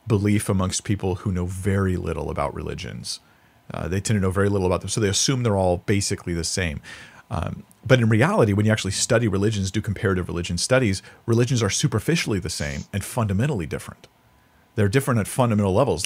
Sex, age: male, 40-59